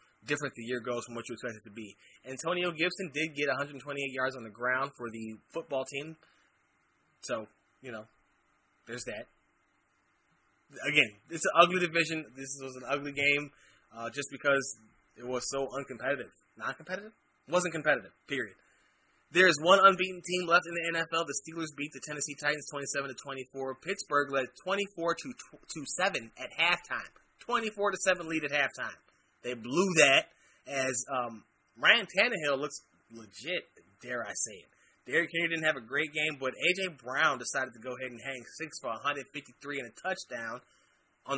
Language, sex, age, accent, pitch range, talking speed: English, male, 20-39, American, 130-165 Hz, 165 wpm